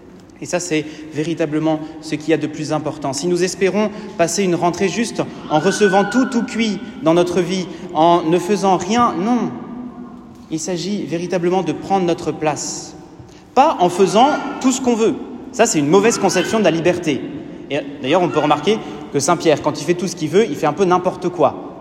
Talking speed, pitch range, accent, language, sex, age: 200 wpm, 155-215 Hz, French, French, male, 30-49